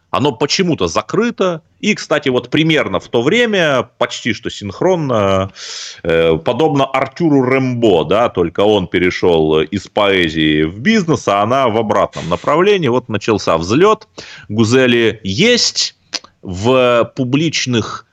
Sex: male